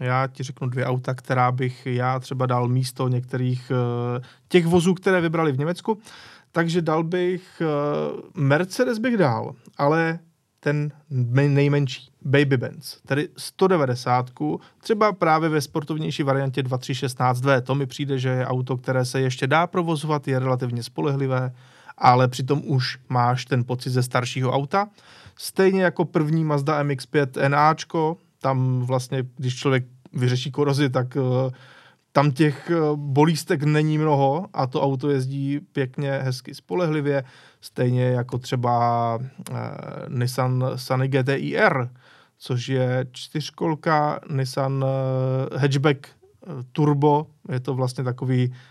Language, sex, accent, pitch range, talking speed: Czech, male, native, 130-155 Hz, 125 wpm